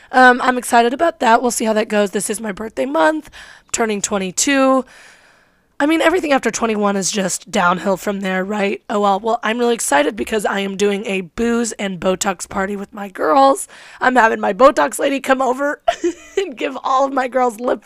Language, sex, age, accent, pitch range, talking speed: English, female, 20-39, American, 195-255 Hz, 205 wpm